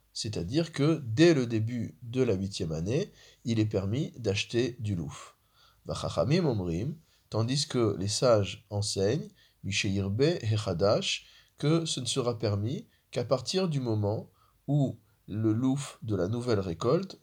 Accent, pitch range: French, 100-125 Hz